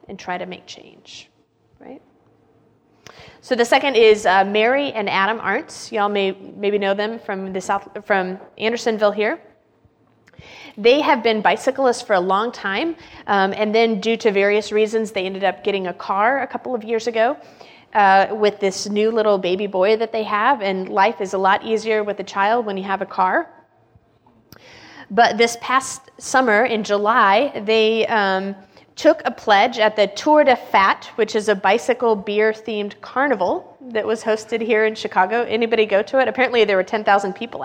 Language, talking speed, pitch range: English, 180 wpm, 195-240 Hz